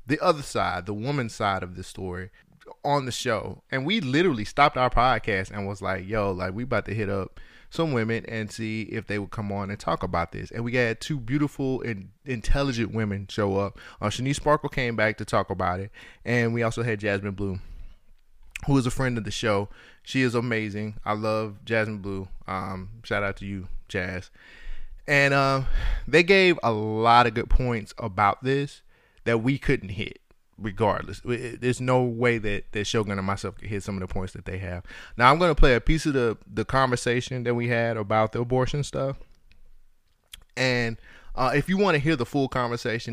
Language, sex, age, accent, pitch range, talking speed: English, male, 20-39, American, 100-135 Hz, 205 wpm